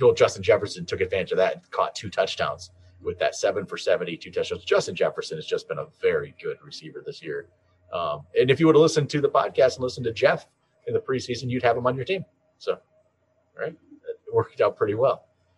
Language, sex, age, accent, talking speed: English, male, 30-49, American, 220 wpm